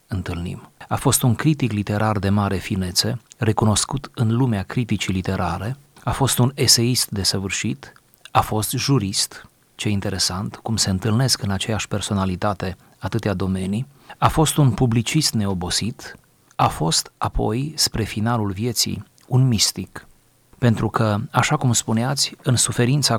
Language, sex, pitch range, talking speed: Romanian, male, 100-125 Hz, 135 wpm